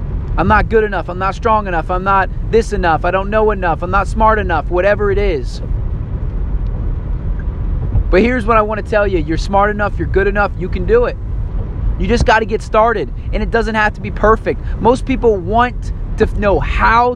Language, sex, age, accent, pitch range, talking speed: English, male, 20-39, American, 160-215 Hz, 210 wpm